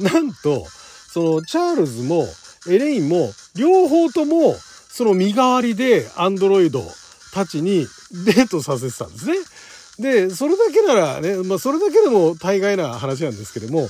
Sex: male